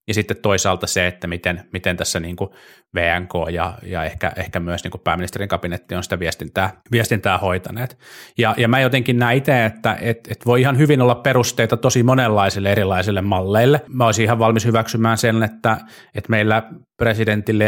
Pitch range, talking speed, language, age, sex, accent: 95-110 Hz, 165 wpm, Finnish, 30-49, male, native